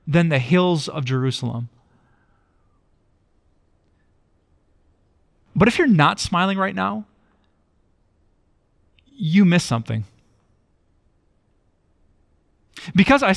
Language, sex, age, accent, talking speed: English, male, 30-49, American, 75 wpm